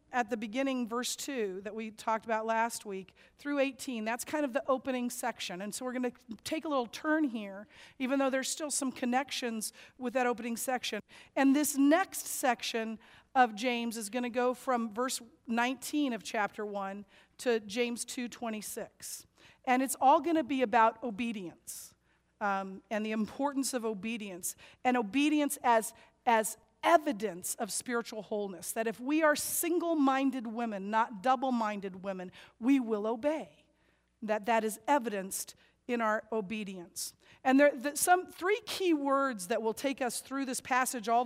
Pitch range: 215-260 Hz